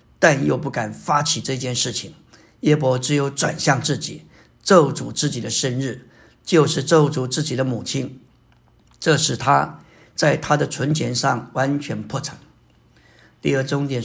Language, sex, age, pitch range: Chinese, male, 50-69, 130-160 Hz